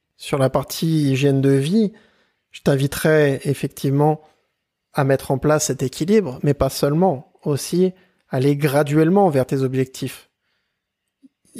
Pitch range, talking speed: 130-160 Hz, 130 wpm